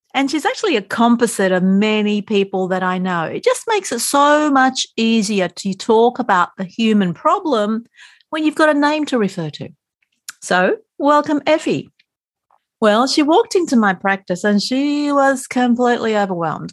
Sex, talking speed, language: female, 165 wpm, English